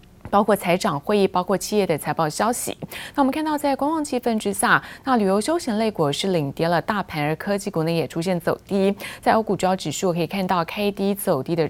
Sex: female